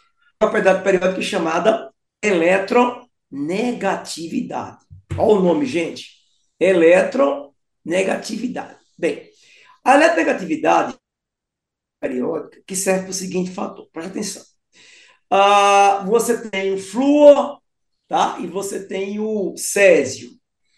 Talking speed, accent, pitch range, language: 100 wpm, Brazilian, 190-260 Hz, Portuguese